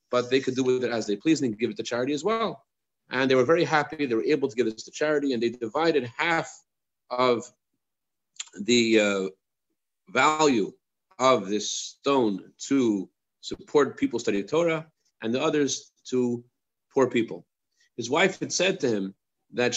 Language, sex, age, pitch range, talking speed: English, male, 40-59, 115-150 Hz, 180 wpm